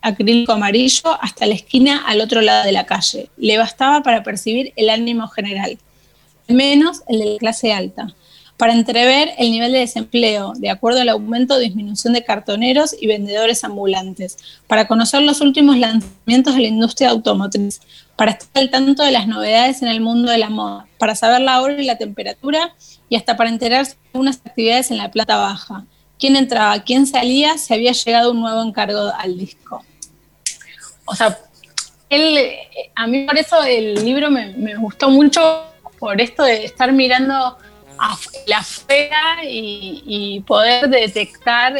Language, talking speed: Spanish, 170 wpm